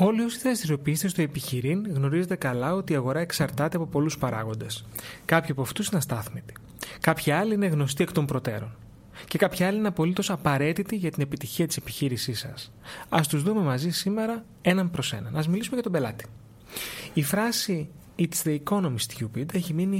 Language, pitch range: Greek, 130-180 Hz